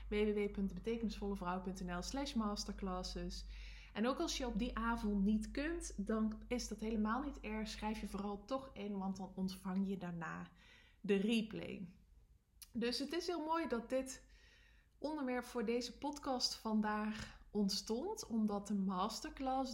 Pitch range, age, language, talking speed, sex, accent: 200-245 Hz, 20-39, English, 140 wpm, female, Dutch